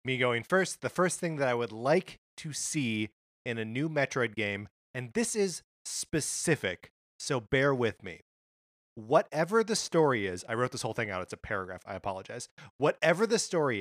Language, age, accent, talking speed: English, 30-49, American, 185 wpm